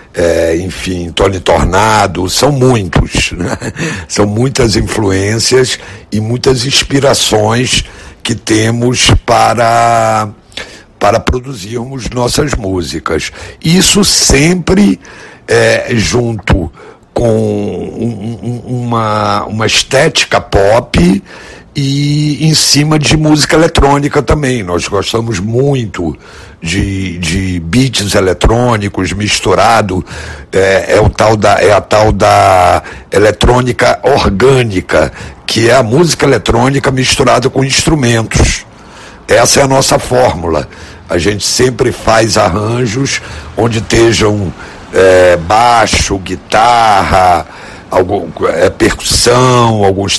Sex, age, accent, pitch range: male, 60-79, Brazilian, 100-130 Hz